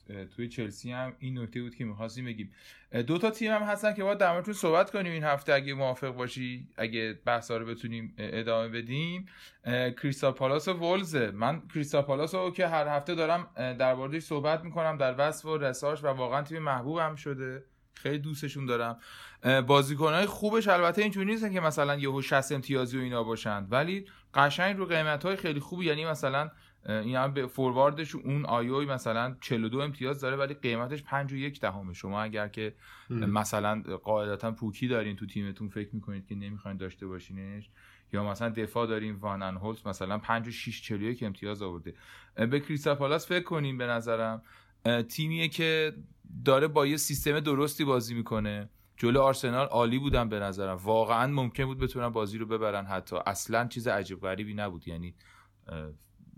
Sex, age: male, 20-39